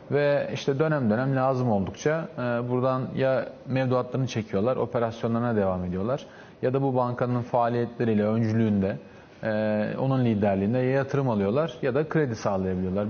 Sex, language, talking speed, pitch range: male, Turkish, 125 wpm, 110-135 Hz